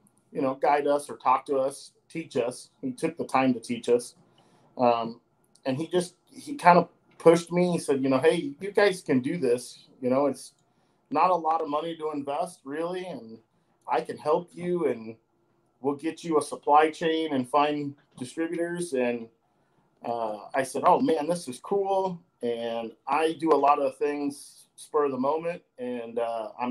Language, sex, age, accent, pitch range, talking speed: English, male, 40-59, American, 125-155 Hz, 190 wpm